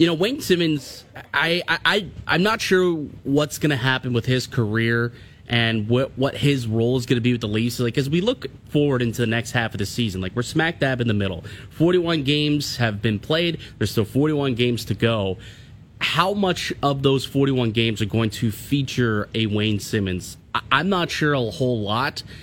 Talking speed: 215 wpm